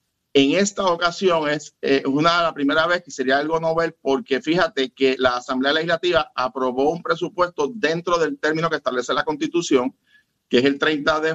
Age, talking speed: 50-69, 180 wpm